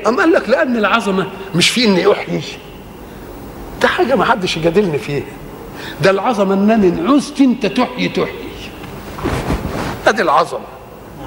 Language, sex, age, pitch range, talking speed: Arabic, male, 50-69, 180-225 Hz, 130 wpm